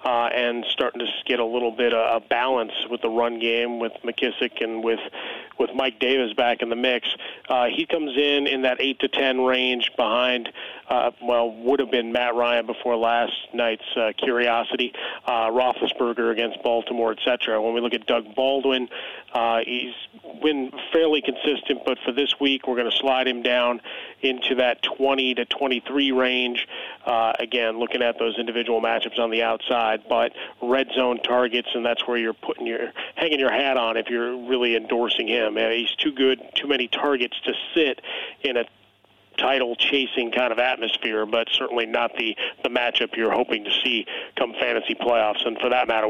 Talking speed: 190 wpm